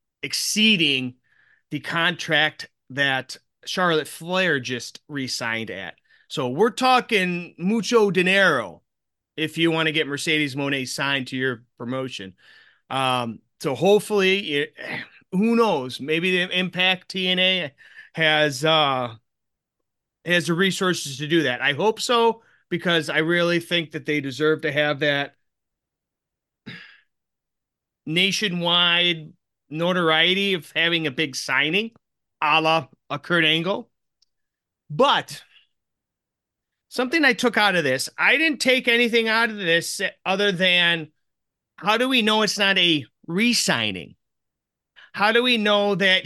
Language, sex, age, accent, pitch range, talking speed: English, male, 30-49, American, 145-195 Hz, 125 wpm